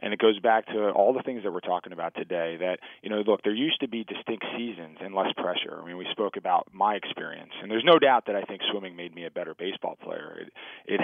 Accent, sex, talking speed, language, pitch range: American, male, 265 wpm, English, 90-100 Hz